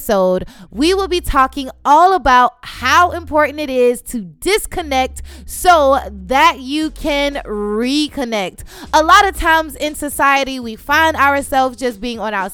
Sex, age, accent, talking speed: female, 20-39, American, 145 wpm